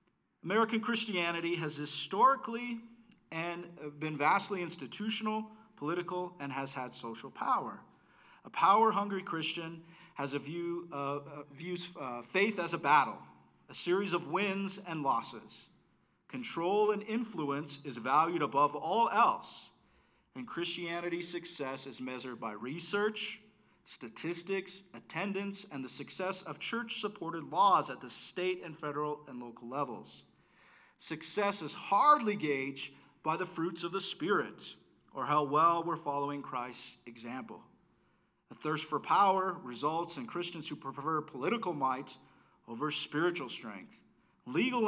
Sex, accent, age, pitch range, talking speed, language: male, American, 40-59, 140-195 Hz, 130 wpm, English